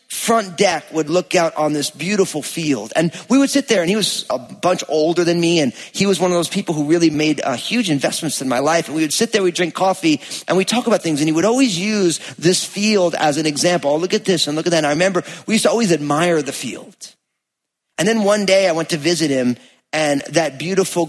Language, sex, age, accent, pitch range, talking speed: English, male, 30-49, American, 140-180 Hz, 260 wpm